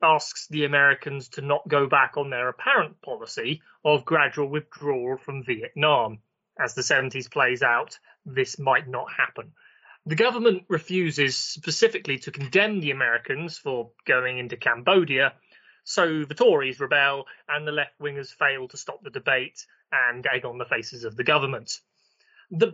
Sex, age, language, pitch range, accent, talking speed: male, 30-49, English, 135-170 Hz, British, 155 wpm